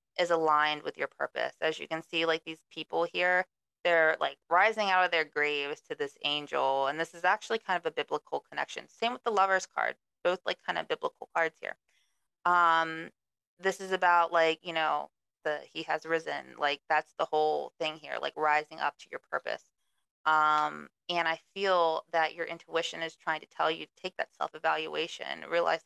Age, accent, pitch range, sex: 20-39, American, 155-180 Hz, female